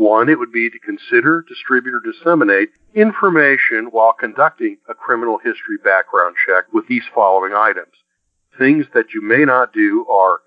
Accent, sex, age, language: American, male, 50-69, English